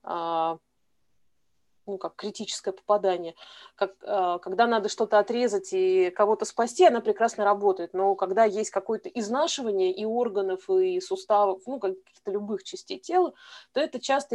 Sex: female